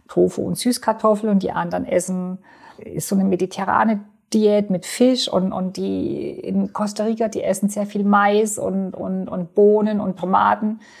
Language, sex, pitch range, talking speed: German, female, 185-225 Hz, 170 wpm